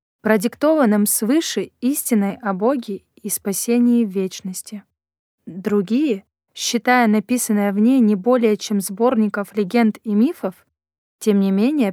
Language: Russian